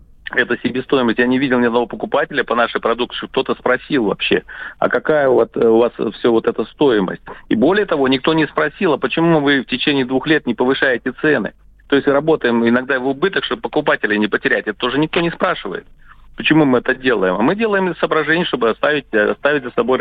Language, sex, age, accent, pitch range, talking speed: Russian, male, 40-59, native, 105-135 Hz, 200 wpm